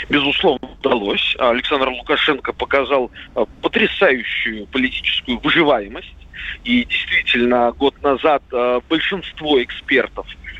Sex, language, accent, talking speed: male, Russian, native, 80 wpm